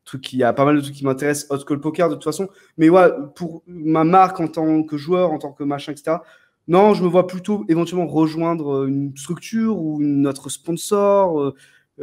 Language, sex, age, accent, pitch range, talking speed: French, male, 20-39, French, 130-160 Hz, 215 wpm